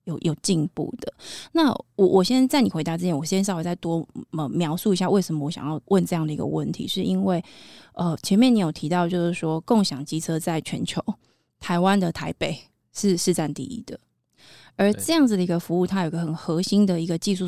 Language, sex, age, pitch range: Chinese, female, 20-39, 160-190 Hz